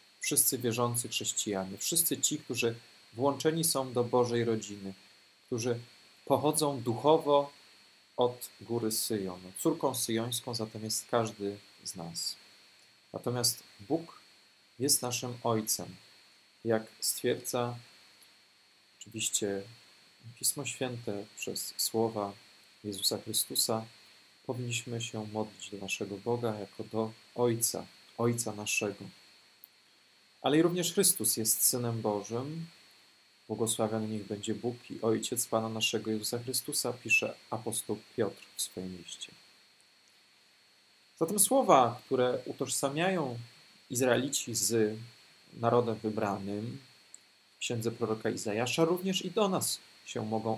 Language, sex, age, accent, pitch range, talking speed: Polish, male, 40-59, native, 105-130 Hz, 105 wpm